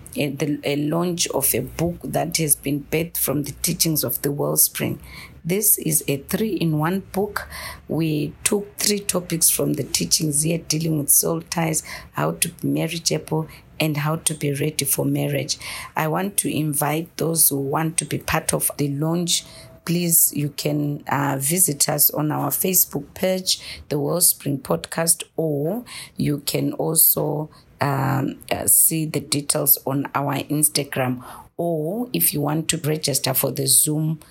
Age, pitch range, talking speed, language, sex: 40-59, 140-160 Hz, 155 wpm, English, female